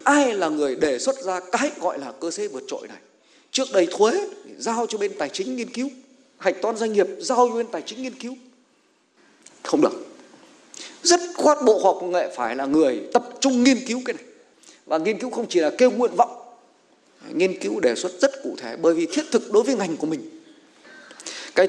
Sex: male